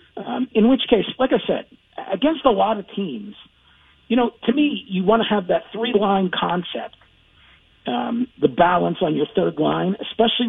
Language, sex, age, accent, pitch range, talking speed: English, male, 50-69, American, 165-230 Hz, 175 wpm